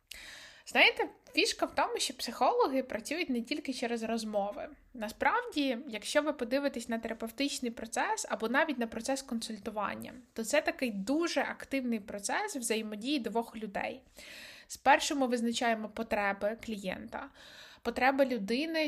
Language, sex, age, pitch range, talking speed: Ukrainian, female, 20-39, 205-275 Hz, 125 wpm